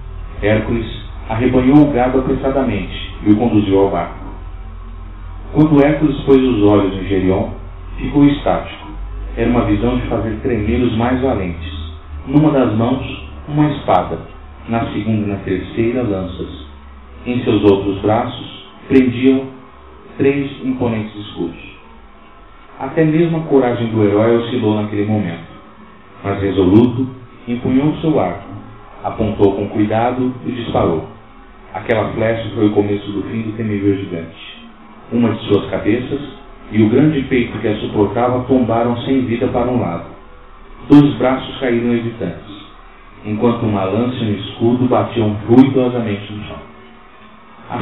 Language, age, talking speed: Portuguese, 40-59, 135 wpm